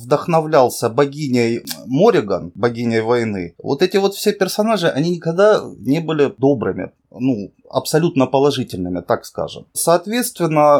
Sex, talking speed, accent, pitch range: male, 115 wpm, native, 130-195 Hz